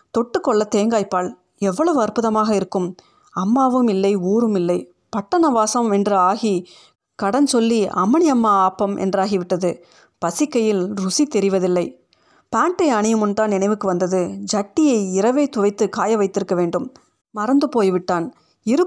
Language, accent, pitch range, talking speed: Tamil, native, 185-245 Hz, 105 wpm